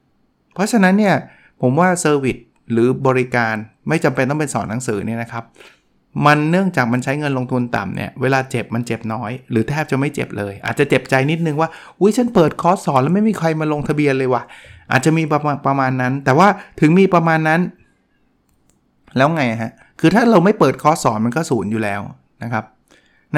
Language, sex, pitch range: Thai, male, 125-165 Hz